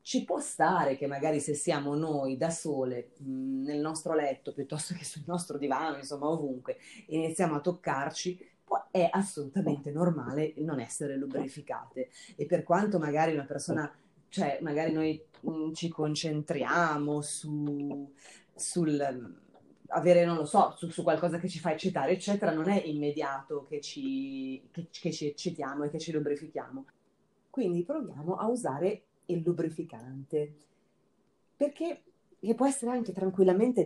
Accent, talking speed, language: native, 135 wpm, Italian